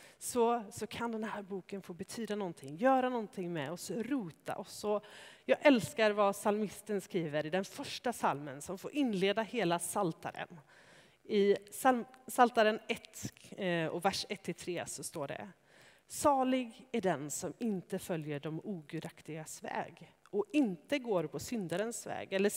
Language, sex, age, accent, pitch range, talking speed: Swedish, female, 30-49, native, 170-230 Hz, 145 wpm